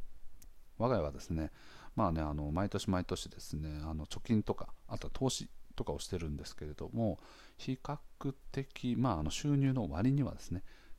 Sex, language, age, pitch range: male, Japanese, 40-59, 80-110 Hz